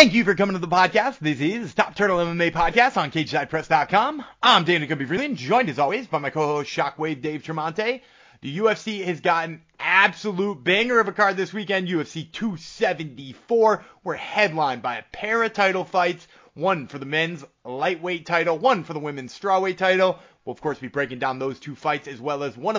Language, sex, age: English, male, 30-49